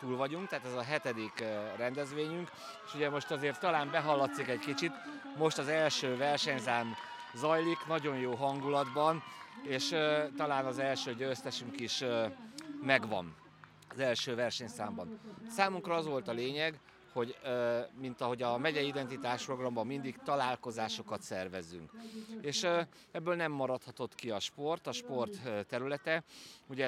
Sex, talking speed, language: male, 135 wpm, Hungarian